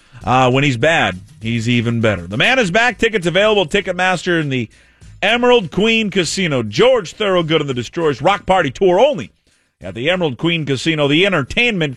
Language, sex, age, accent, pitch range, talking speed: English, male, 40-59, American, 125-190 Hz, 175 wpm